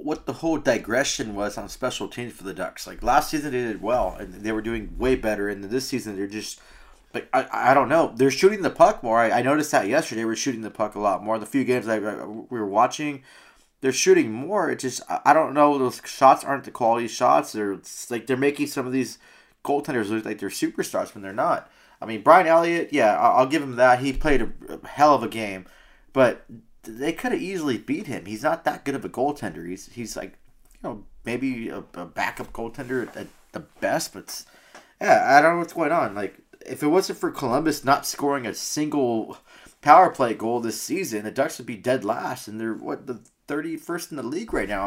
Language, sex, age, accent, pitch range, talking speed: English, male, 20-39, American, 110-145 Hz, 225 wpm